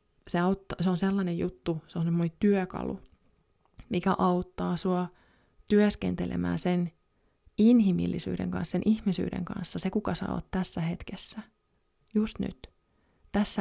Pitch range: 160-190 Hz